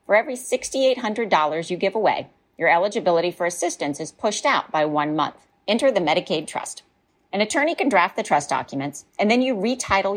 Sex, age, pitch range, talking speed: female, 40-59, 165-240 Hz, 185 wpm